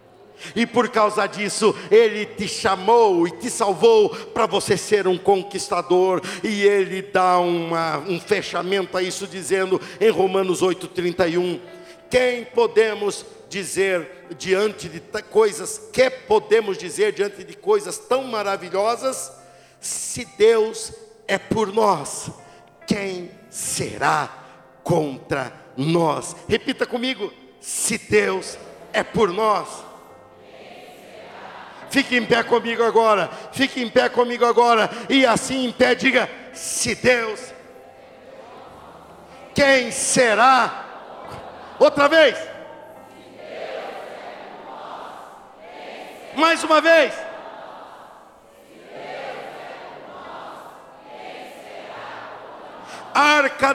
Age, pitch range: 60-79, 195-300 Hz